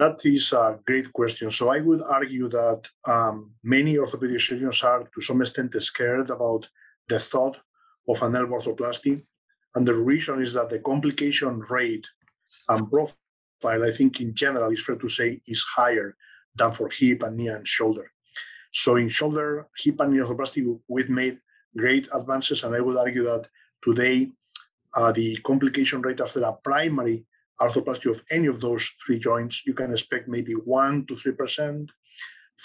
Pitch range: 120-140 Hz